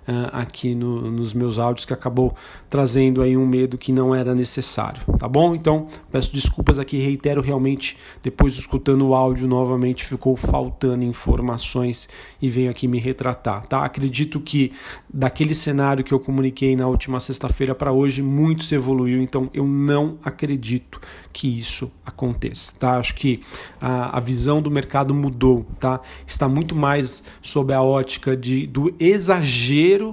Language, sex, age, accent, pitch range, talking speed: Portuguese, male, 40-59, Brazilian, 125-140 Hz, 155 wpm